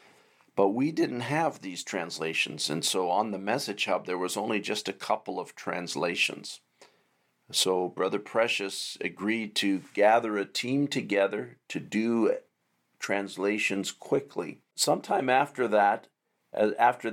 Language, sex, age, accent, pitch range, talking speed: English, male, 50-69, American, 95-110 Hz, 130 wpm